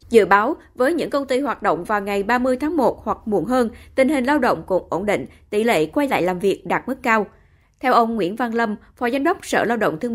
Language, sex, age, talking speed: Vietnamese, female, 20-39, 260 wpm